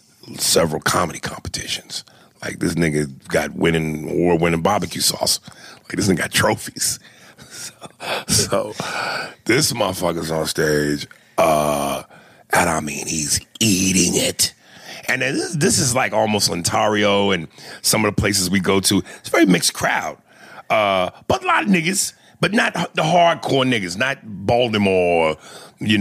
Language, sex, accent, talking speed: English, male, American, 150 wpm